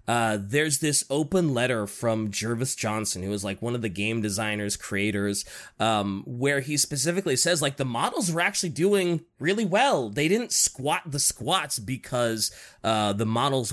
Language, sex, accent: English, male, American